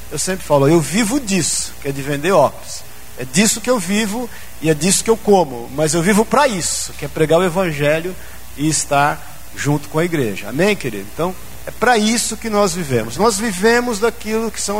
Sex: male